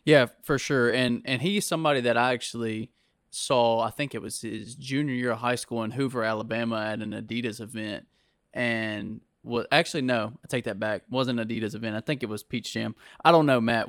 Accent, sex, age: American, male, 20-39